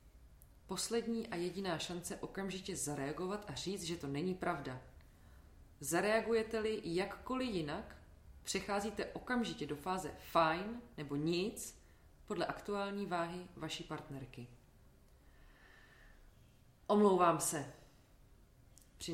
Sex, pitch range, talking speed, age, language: female, 145-185 Hz, 95 wpm, 20-39, Czech